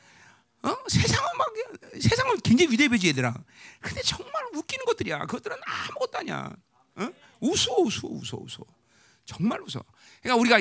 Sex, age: male, 40-59